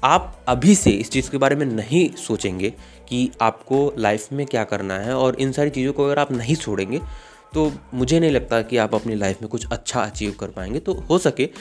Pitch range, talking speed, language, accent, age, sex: 105-150 Hz, 220 wpm, Hindi, native, 30-49, male